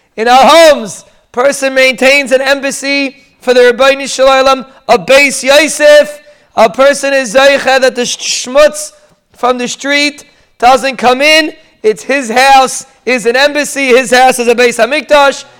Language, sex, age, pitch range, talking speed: English, male, 20-39, 250-285 Hz, 150 wpm